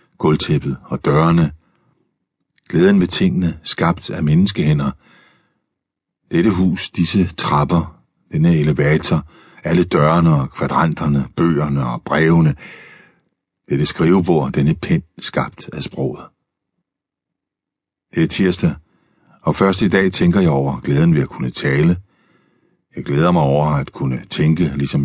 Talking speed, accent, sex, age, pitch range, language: 125 wpm, native, male, 60-79, 75-95 Hz, Danish